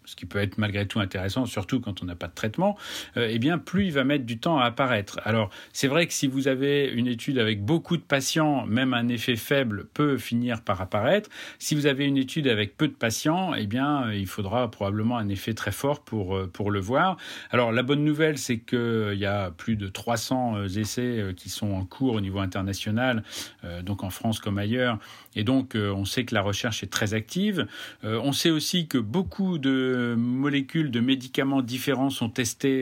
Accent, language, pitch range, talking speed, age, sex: French, French, 100-130 Hz, 220 wpm, 40-59, male